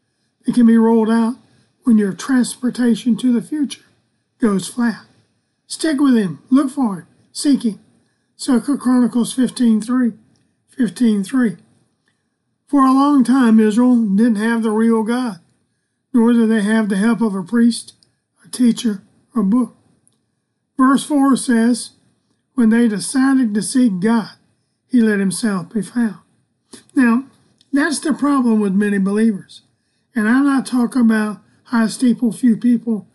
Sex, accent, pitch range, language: male, American, 215-255 Hz, English